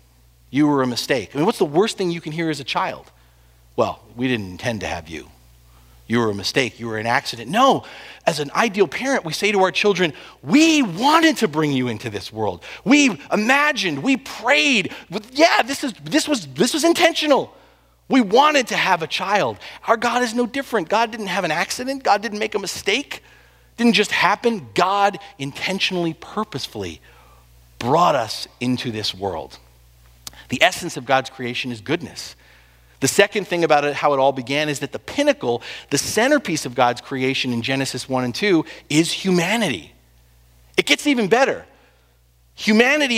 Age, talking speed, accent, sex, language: 40-59, 185 wpm, American, male, English